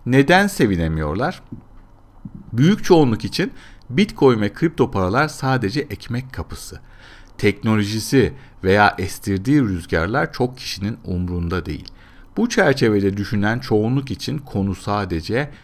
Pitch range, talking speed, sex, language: 95-135 Hz, 105 wpm, male, Turkish